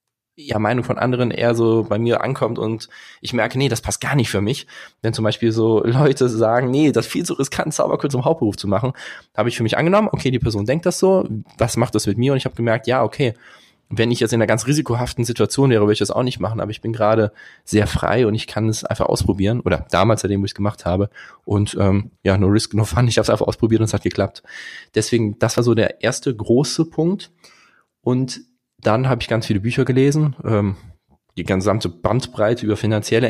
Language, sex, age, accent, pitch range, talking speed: German, male, 20-39, German, 105-125 Hz, 235 wpm